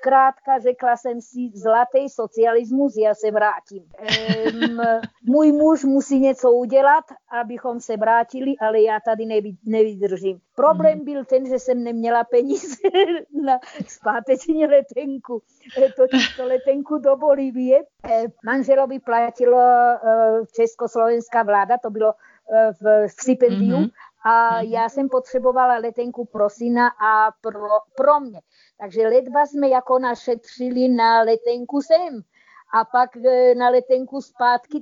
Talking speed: 120 wpm